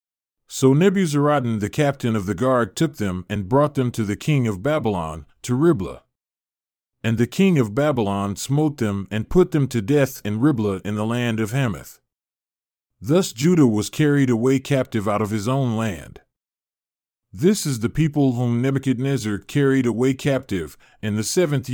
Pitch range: 110-145 Hz